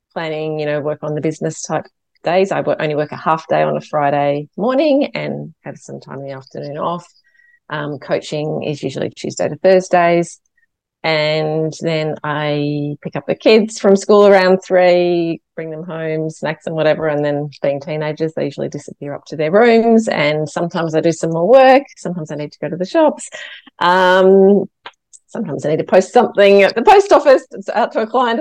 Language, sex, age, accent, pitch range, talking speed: English, female, 30-49, Australian, 155-205 Hz, 195 wpm